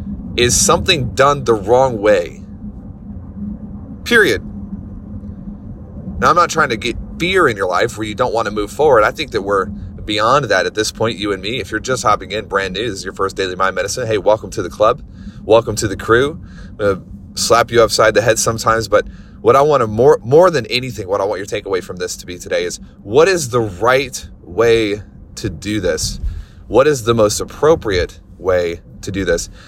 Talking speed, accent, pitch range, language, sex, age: 215 wpm, American, 95-130 Hz, English, male, 30-49